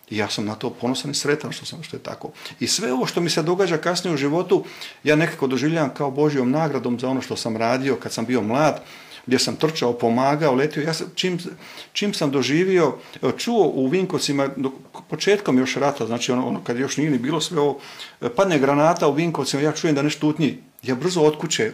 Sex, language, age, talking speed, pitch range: male, Croatian, 40-59, 205 wpm, 125-160 Hz